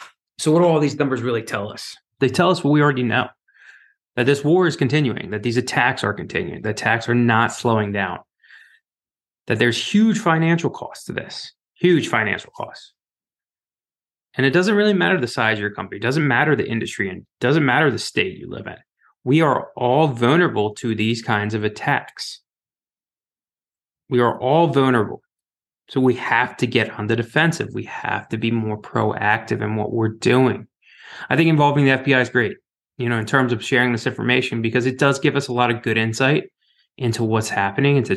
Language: English